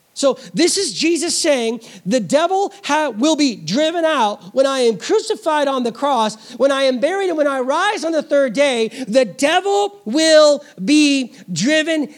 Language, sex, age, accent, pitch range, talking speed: English, male, 40-59, American, 235-290 Hz, 170 wpm